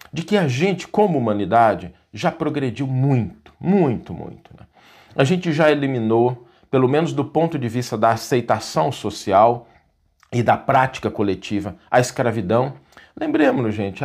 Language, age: Portuguese, 50-69